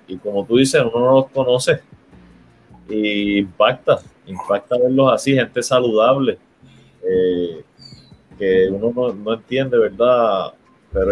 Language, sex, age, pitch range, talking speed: Spanish, male, 30-49, 115-150 Hz, 125 wpm